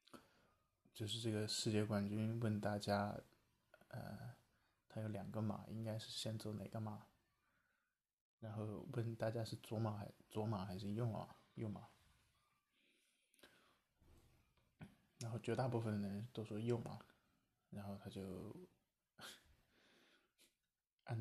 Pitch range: 100-115 Hz